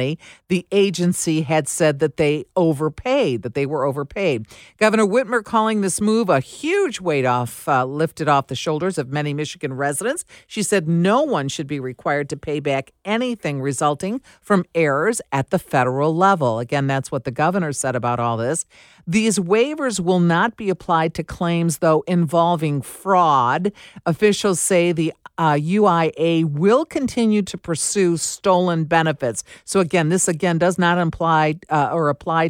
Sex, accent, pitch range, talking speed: female, American, 150-200 Hz, 160 wpm